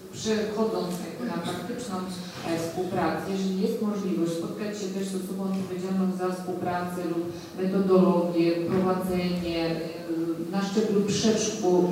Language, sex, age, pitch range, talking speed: Polish, female, 40-59, 185-225 Hz, 105 wpm